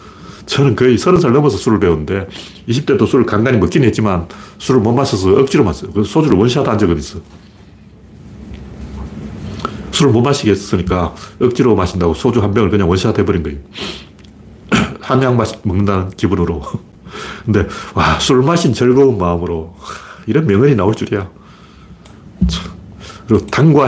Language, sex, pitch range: Korean, male, 95-130 Hz